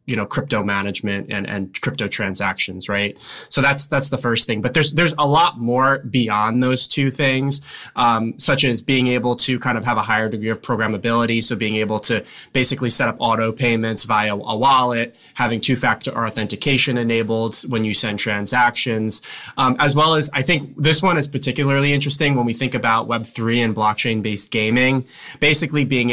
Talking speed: 190 wpm